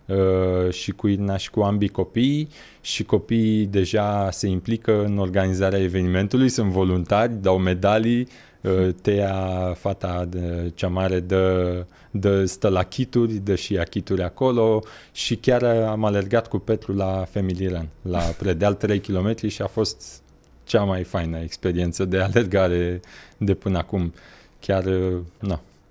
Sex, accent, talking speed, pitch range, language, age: male, native, 140 wpm, 90-110 Hz, Romanian, 20-39